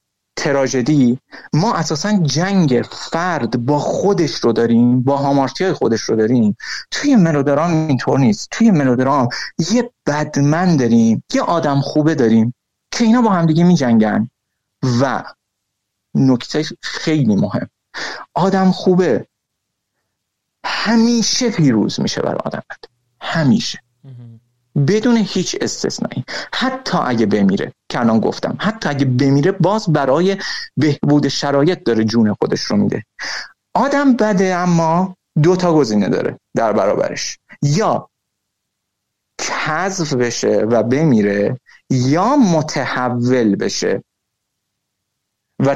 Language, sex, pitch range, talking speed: Persian, male, 125-185 Hz, 110 wpm